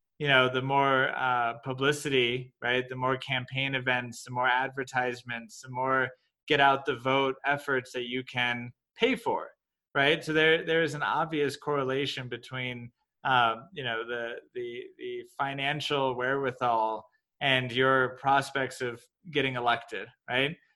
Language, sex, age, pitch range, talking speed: English, male, 20-39, 130-155 Hz, 145 wpm